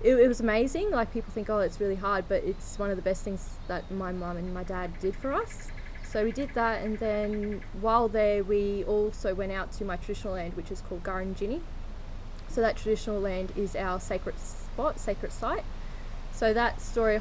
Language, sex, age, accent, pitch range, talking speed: English, female, 20-39, Australian, 185-210 Hz, 210 wpm